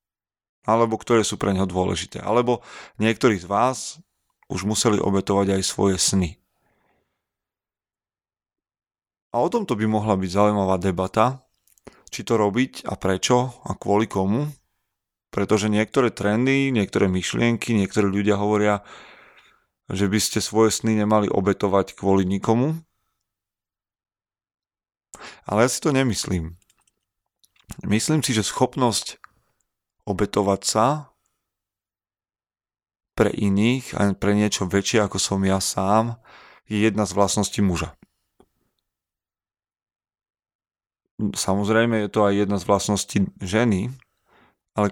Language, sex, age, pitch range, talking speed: Slovak, male, 30-49, 95-110 Hz, 110 wpm